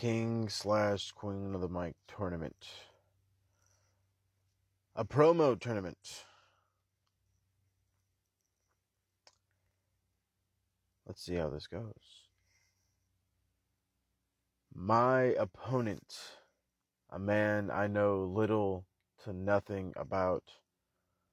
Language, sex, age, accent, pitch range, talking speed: English, male, 30-49, American, 85-105 Hz, 70 wpm